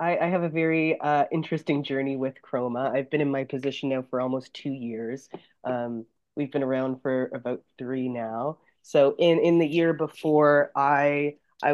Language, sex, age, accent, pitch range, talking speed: English, female, 30-49, American, 125-150 Hz, 180 wpm